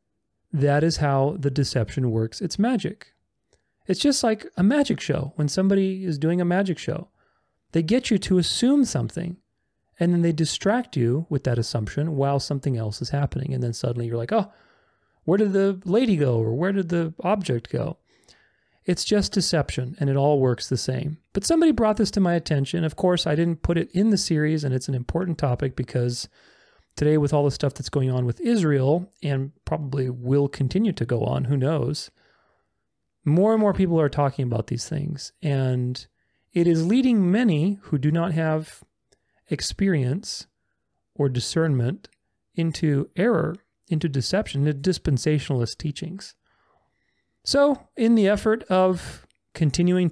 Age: 30-49